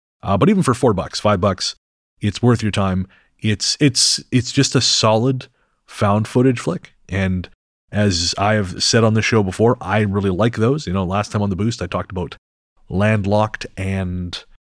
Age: 30-49